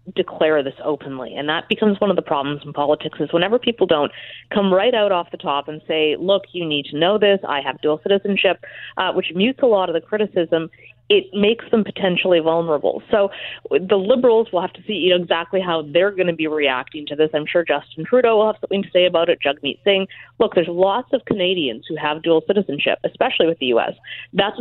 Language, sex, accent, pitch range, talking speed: English, female, American, 160-205 Hz, 225 wpm